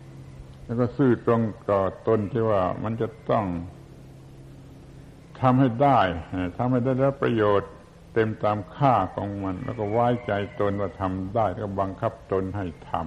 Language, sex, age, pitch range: Thai, male, 70-89, 90-110 Hz